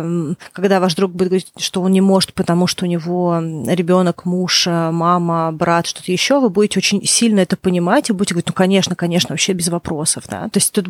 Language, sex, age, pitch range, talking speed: Russian, female, 30-49, 175-195 Hz, 210 wpm